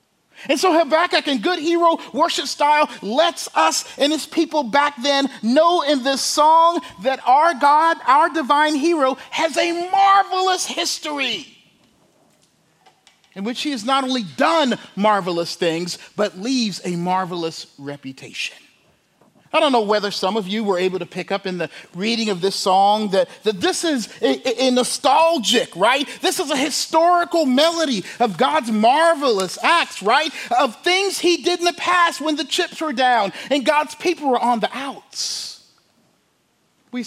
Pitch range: 225-310 Hz